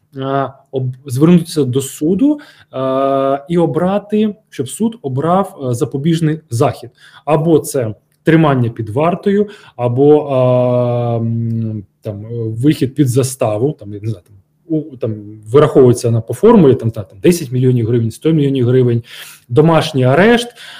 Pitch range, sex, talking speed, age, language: 125-180 Hz, male, 120 wpm, 20-39, Ukrainian